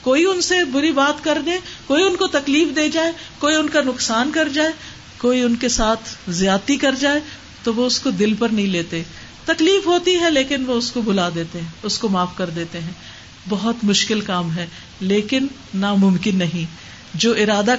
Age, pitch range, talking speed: 50-69, 190-275 Hz, 195 wpm